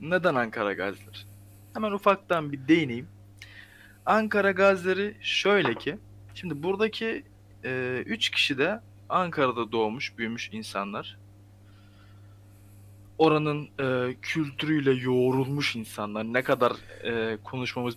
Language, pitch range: Turkish, 100-155 Hz